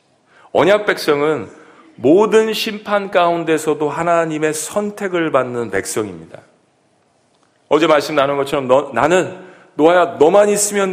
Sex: male